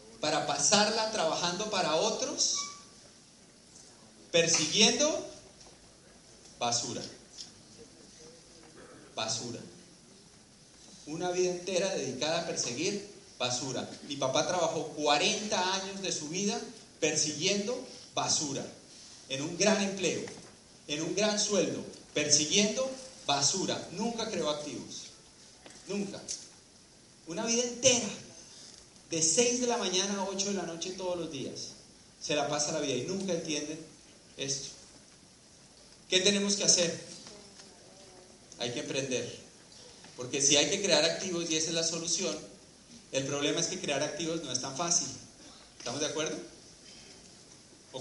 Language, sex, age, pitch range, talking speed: Spanish, male, 30-49, 150-200 Hz, 120 wpm